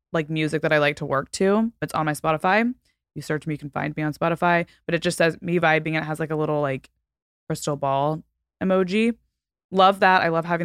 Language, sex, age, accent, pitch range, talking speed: English, female, 20-39, American, 155-190 Hz, 230 wpm